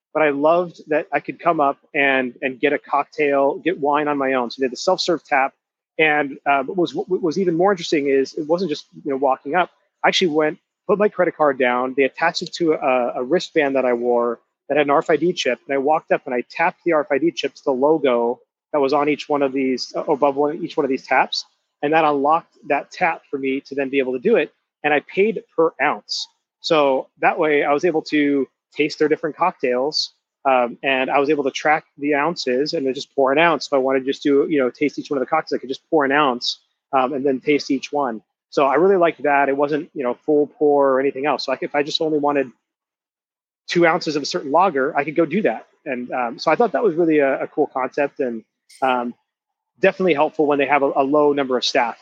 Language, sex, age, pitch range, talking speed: English, male, 30-49, 135-160 Hz, 250 wpm